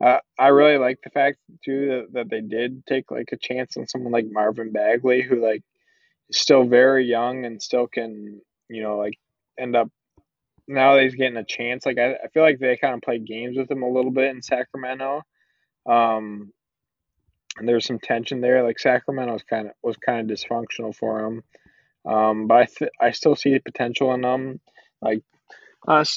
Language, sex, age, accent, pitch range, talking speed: English, male, 20-39, American, 115-135 Hz, 195 wpm